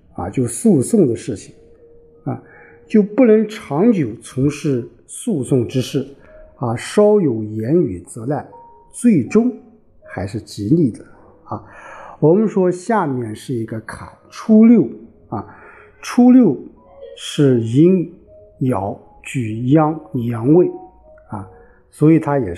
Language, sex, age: Chinese, male, 50-69